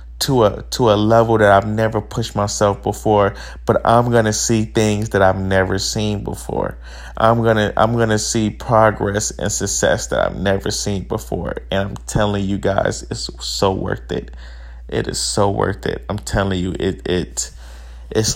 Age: 20-39